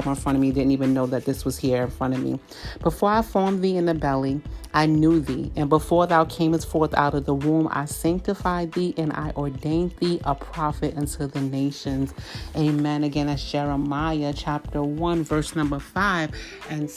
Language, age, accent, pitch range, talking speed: English, 40-59, American, 140-160 Hz, 200 wpm